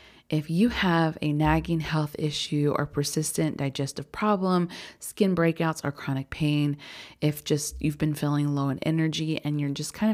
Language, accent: English, American